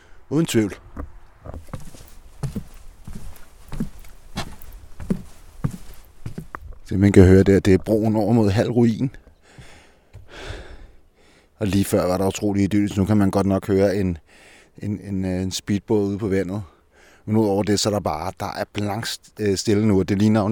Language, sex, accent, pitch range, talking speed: Danish, male, native, 90-110 Hz, 150 wpm